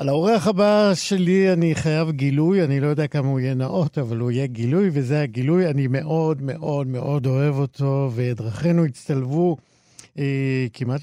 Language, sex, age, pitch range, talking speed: Hebrew, male, 50-69, 115-150 Hz, 165 wpm